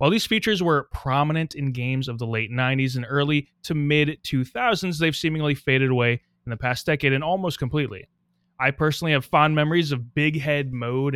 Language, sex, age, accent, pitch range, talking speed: English, male, 20-39, American, 125-155 Hz, 190 wpm